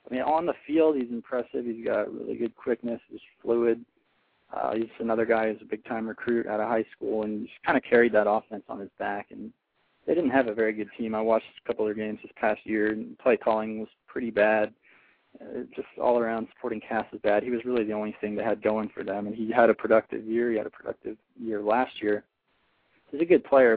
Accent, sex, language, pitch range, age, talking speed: American, male, English, 110-120 Hz, 20-39, 240 wpm